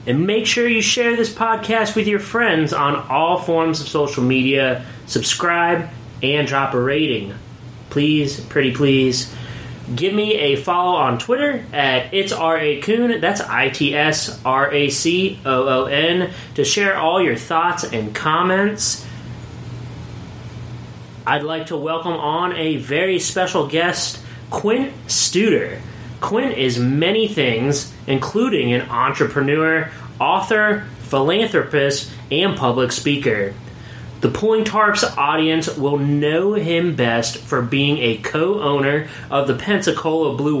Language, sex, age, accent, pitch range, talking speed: English, male, 30-49, American, 130-185 Hz, 120 wpm